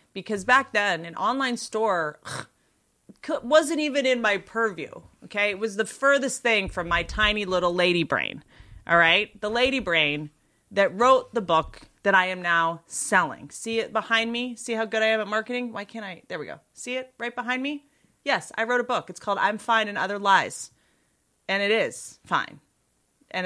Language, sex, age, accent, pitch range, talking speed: English, female, 30-49, American, 180-245 Hz, 195 wpm